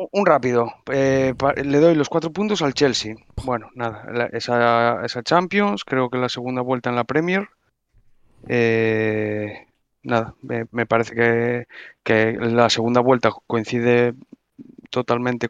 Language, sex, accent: Spanish, male, Spanish